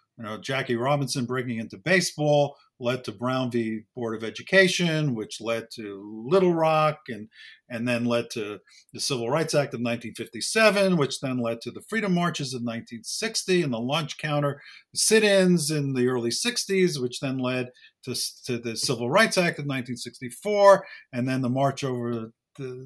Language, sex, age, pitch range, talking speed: English, male, 50-69, 120-160 Hz, 175 wpm